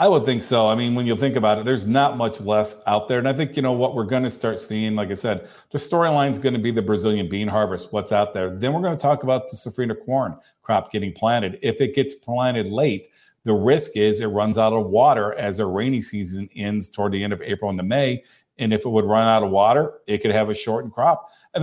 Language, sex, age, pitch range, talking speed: English, male, 40-59, 105-125 Hz, 265 wpm